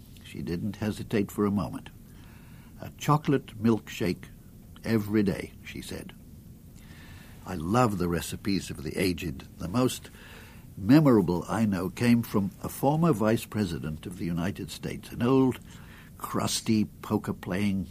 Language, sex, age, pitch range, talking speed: English, male, 60-79, 90-120 Hz, 130 wpm